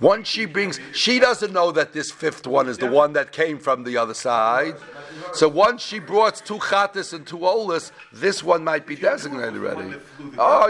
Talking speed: 195 wpm